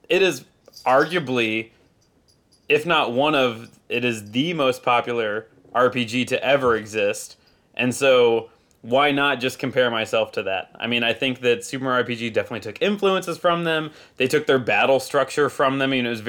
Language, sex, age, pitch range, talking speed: English, male, 20-39, 120-145 Hz, 190 wpm